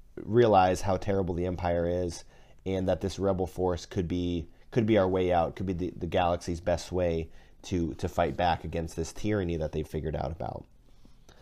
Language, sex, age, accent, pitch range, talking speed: English, male, 30-49, American, 85-105 Hz, 195 wpm